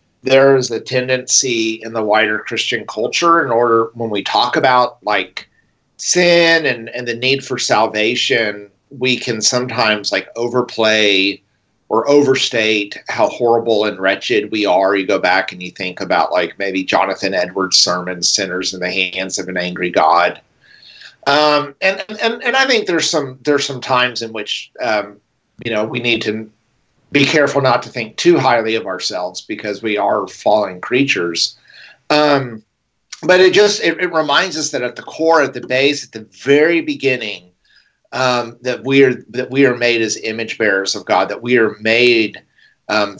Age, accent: 40-59, American